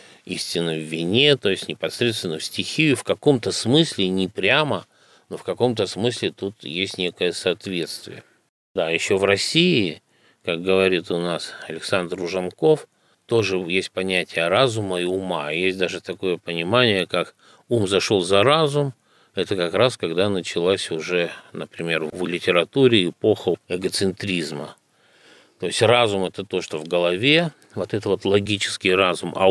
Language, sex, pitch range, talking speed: Russian, male, 90-115 Hz, 145 wpm